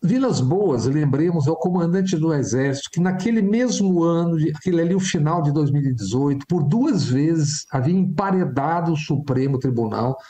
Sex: male